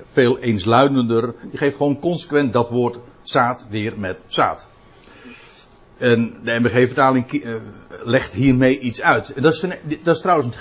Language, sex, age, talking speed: Dutch, male, 60-79, 140 wpm